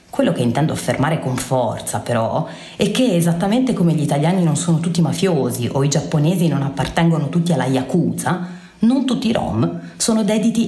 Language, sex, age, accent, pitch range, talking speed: Italian, female, 30-49, native, 140-205 Hz, 175 wpm